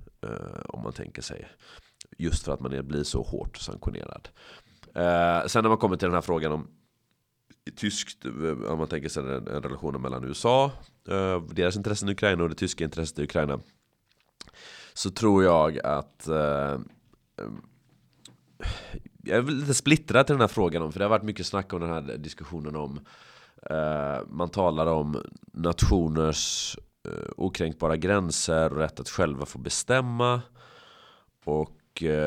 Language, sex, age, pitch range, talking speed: Swedish, male, 30-49, 70-90 Hz, 145 wpm